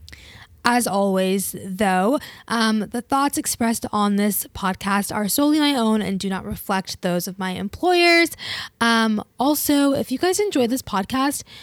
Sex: female